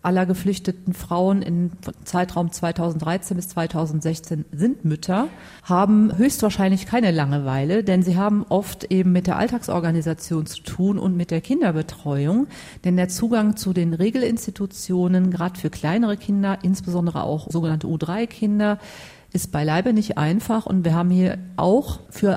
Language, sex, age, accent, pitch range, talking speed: German, female, 40-59, German, 165-200 Hz, 140 wpm